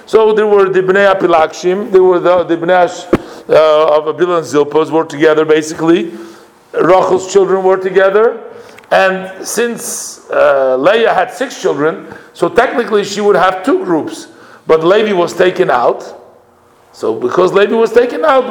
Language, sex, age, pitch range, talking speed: English, male, 50-69, 165-220 Hz, 160 wpm